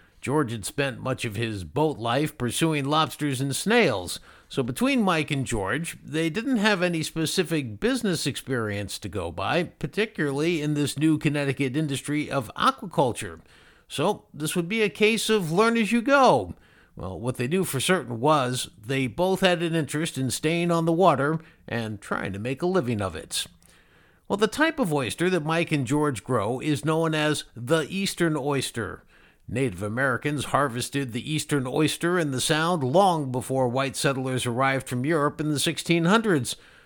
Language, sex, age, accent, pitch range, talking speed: English, male, 50-69, American, 130-175 Hz, 170 wpm